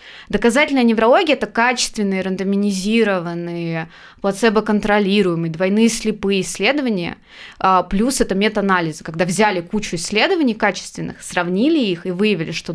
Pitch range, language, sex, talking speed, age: 185-235 Hz, Russian, female, 110 wpm, 20-39